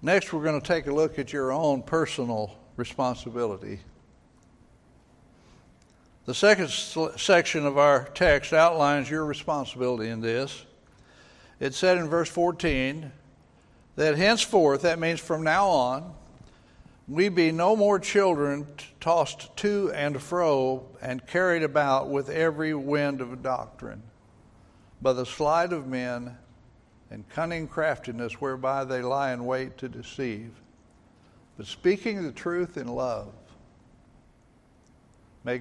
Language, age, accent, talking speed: English, 60-79, American, 130 wpm